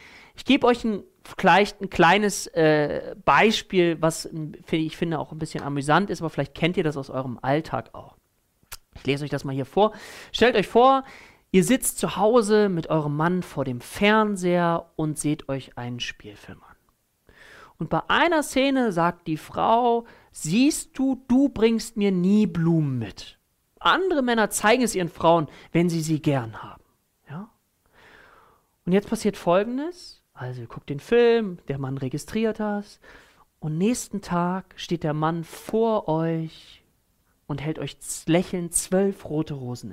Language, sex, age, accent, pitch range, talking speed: German, male, 40-59, German, 155-210 Hz, 160 wpm